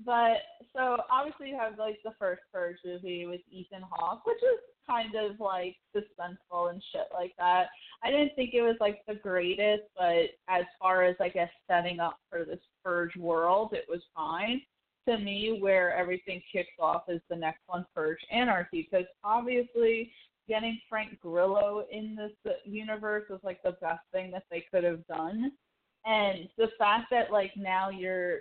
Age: 20-39